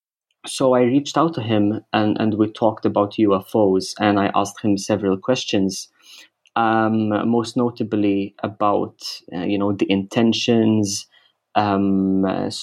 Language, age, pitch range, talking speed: English, 20-39, 100-115 Hz, 140 wpm